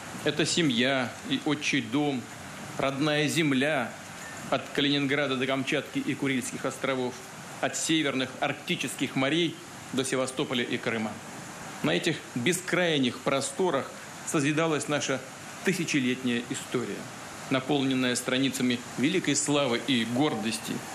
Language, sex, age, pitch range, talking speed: Russian, male, 40-59, 130-150 Hz, 105 wpm